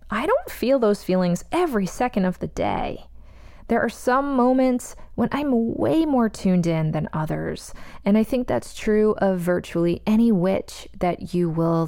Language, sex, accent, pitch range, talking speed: English, female, American, 165-215 Hz, 170 wpm